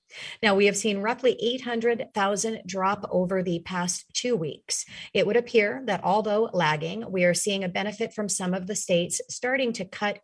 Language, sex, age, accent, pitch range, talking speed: English, female, 30-49, American, 170-215 Hz, 180 wpm